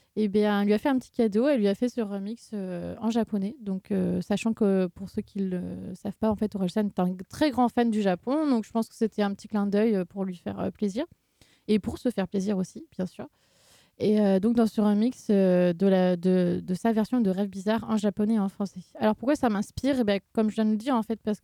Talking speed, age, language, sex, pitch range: 270 wpm, 20-39, French, female, 200-230 Hz